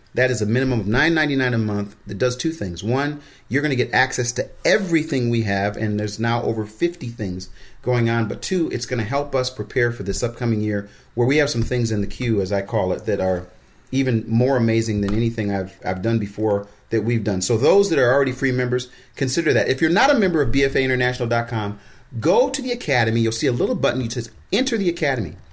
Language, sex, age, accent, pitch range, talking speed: English, male, 30-49, American, 110-145 Hz, 230 wpm